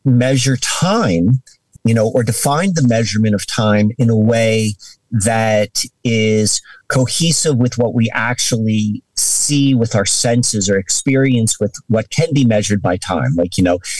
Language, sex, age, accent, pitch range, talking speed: English, male, 50-69, American, 105-125 Hz, 155 wpm